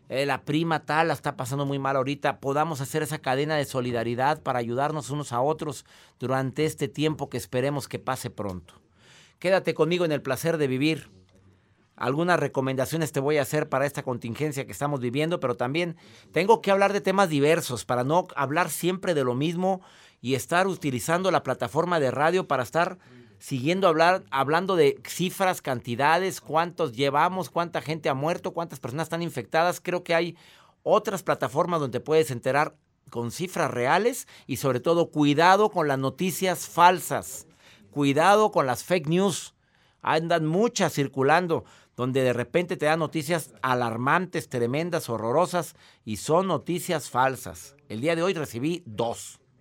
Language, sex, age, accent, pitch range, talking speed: Spanish, male, 50-69, Mexican, 125-170 Hz, 160 wpm